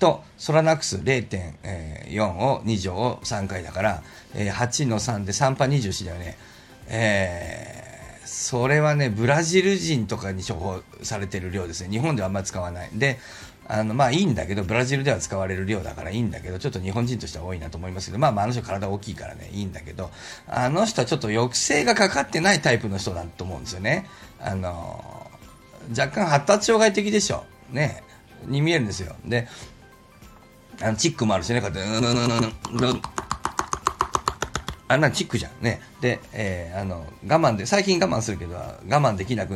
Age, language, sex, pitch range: 40-59, Japanese, male, 95-140 Hz